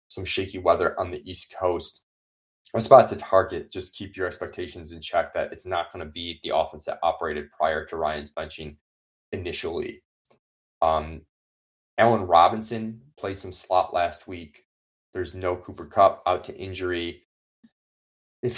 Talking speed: 155 wpm